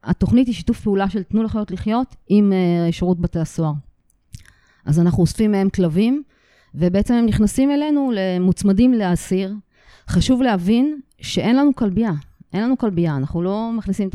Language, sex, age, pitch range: Hebrew, female, 30-49, 175-210 Hz